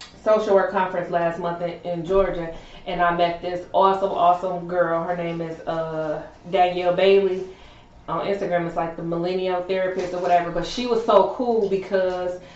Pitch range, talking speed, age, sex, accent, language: 175-200 Hz, 165 wpm, 20-39, female, American, English